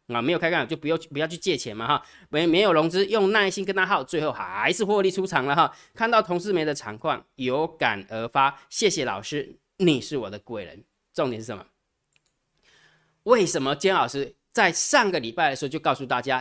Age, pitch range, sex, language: 20-39, 145-195 Hz, male, Chinese